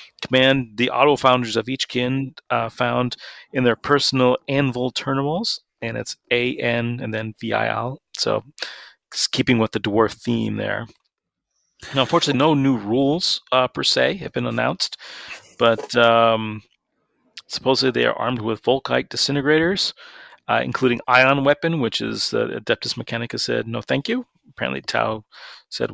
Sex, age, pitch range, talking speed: male, 40-59, 115-135 Hz, 150 wpm